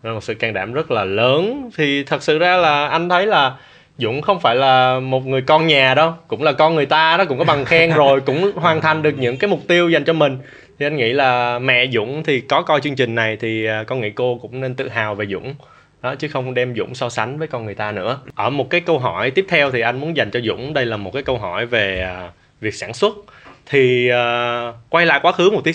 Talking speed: 255 wpm